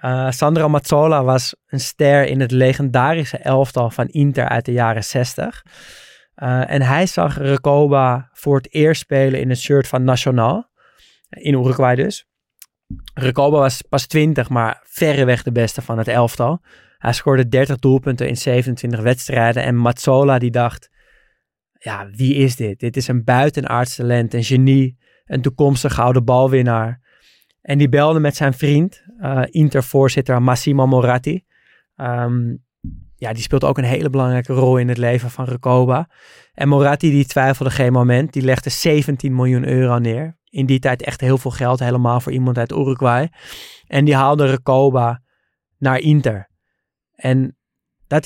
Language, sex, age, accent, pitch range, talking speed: Dutch, male, 20-39, Dutch, 125-145 Hz, 160 wpm